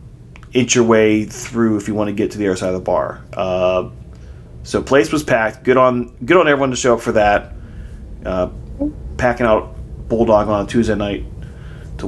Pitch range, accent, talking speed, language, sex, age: 95-120 Hz, American, 200 wpm, English, male, 30-49